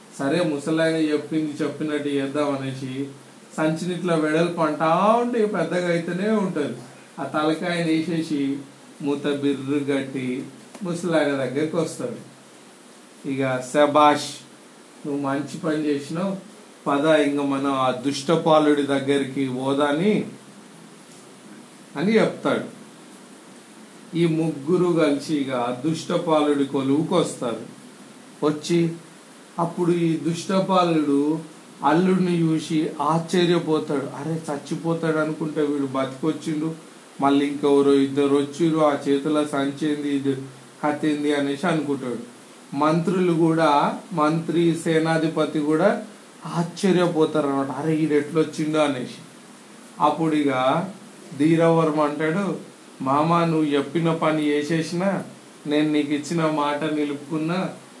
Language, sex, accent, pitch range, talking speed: Telugu, male, native, 145-165 Hz, 70 wpm